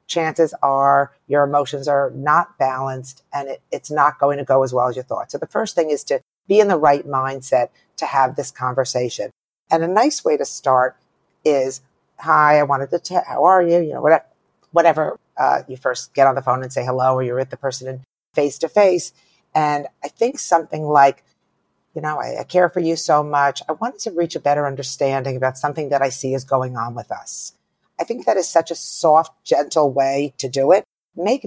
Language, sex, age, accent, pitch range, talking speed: English, female, 50-69, American, 135-170 Hz, 220 wpm